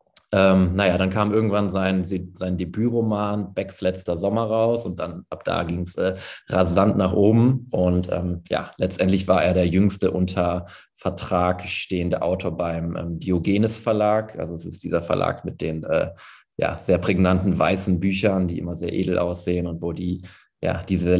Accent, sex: German, male